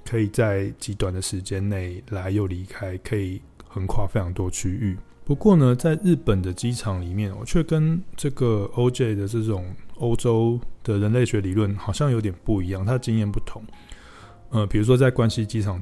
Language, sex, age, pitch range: Chinese, male, 20-39, 100-115 Hz